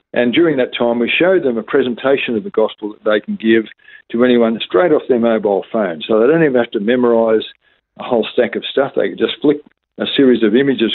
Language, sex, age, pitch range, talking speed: English, male, 50-69, 115-145 Hz, 235 wpm